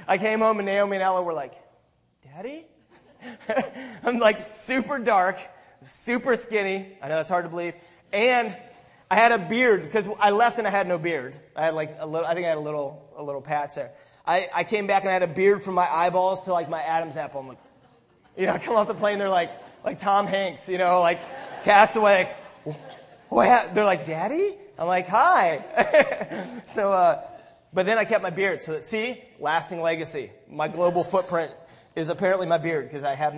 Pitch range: 170-220 Hz